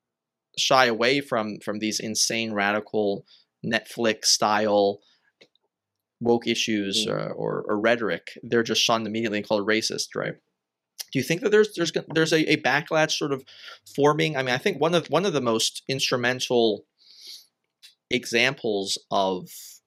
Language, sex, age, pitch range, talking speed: English, male, 20-39, 105-130 Hz, 150 wpm